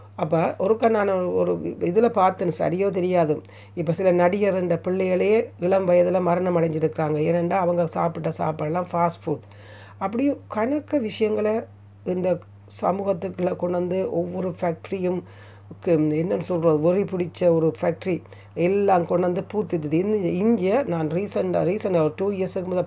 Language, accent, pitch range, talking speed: Tamil, native, 160-205 Hz, 135 wpm